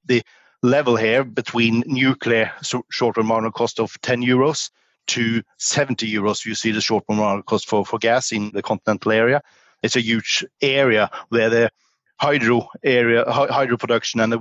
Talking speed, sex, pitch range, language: 160 wpm, male, 105-125 Hz, English